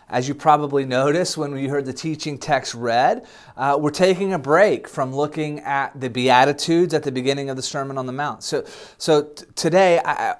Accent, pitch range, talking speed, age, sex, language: American, 130-165 Hz, 200 wpm, 30-49, male, English